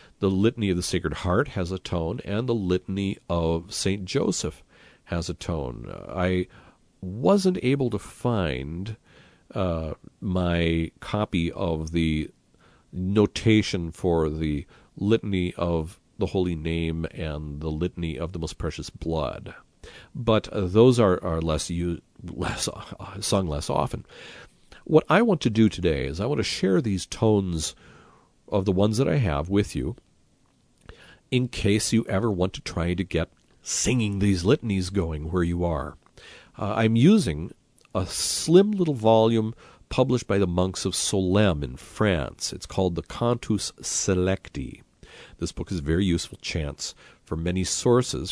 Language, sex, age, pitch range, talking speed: English, male, 40-59, 85-105 Hz, 155 wpm